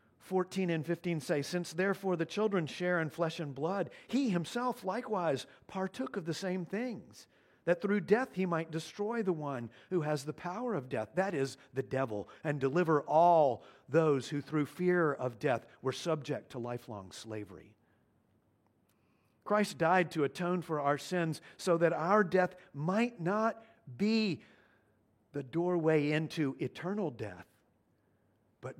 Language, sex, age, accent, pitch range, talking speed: English, male, 50-69, American, 125-195 Hz, 150 wpm